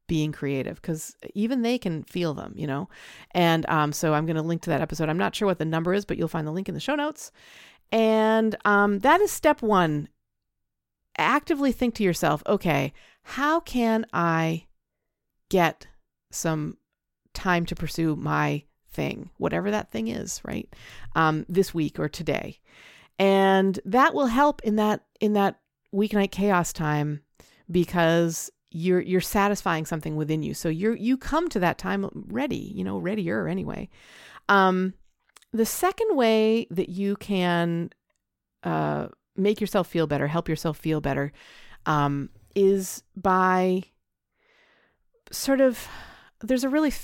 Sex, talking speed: female, 155 wpm